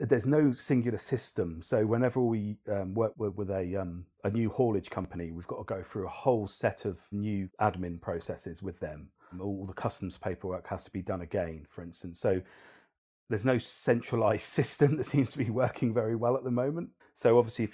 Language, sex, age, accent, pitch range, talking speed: English, male, 40-59, British, 90-110 Hz, 205 wpm